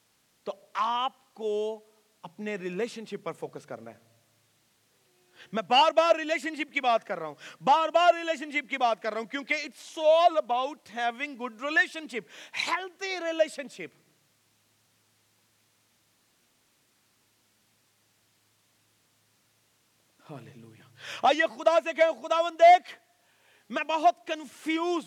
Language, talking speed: Urdu, 115 wpm